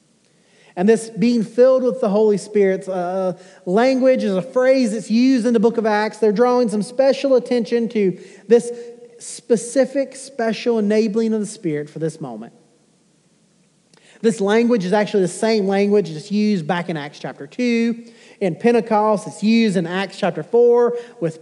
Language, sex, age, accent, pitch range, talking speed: English, male, 30-49, American, 190-240 Hz, 165 wpm